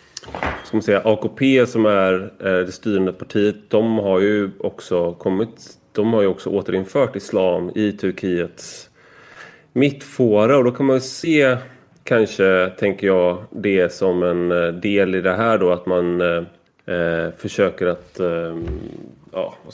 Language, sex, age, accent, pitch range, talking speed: Swedish, male, 30-49, native, 95-115 Hz, 145 wpm